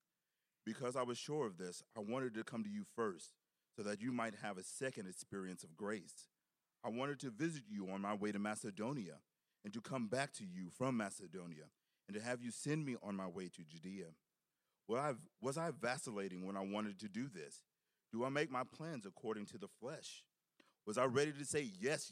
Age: 40-59